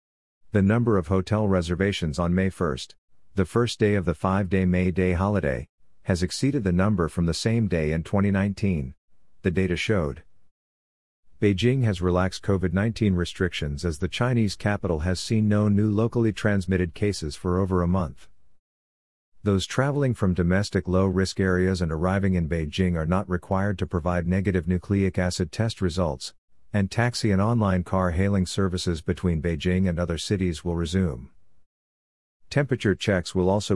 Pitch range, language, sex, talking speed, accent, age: 85-100 Hz, English, male, 155 wpm, American, 50-69